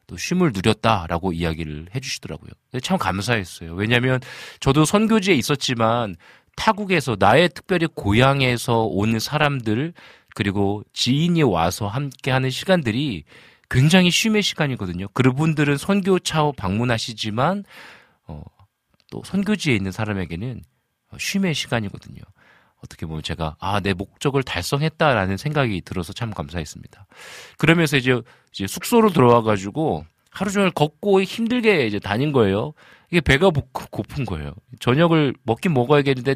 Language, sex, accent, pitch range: Korean, male, native, 100-155 Hz